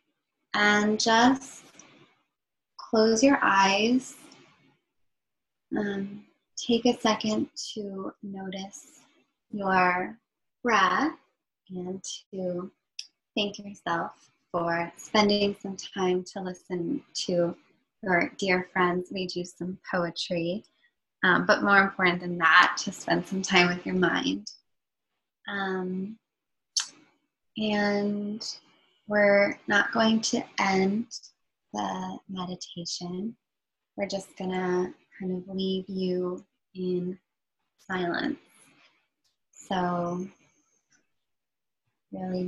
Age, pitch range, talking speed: 20-39, 180-215 Hz, 90 wpm